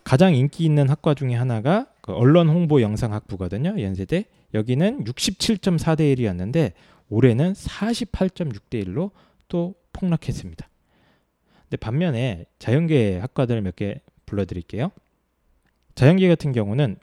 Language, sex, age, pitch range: Korean, male, 20-39, 110-170 Hz